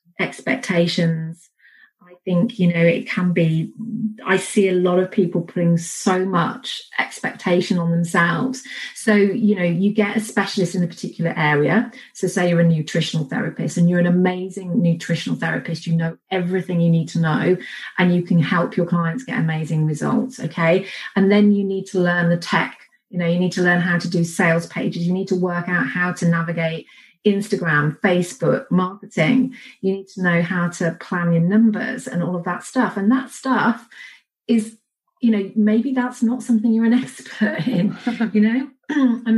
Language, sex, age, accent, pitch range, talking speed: English, female, 30-49, British, 175-225 Hz, 185 wpm